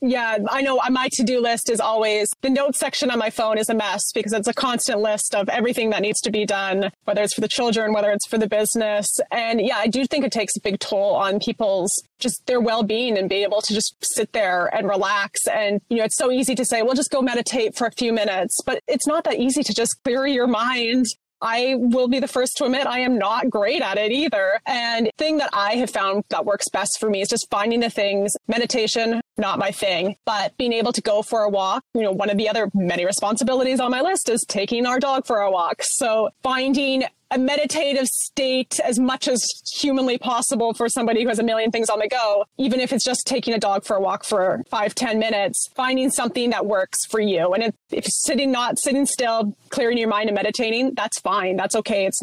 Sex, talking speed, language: female, 240 wpm, English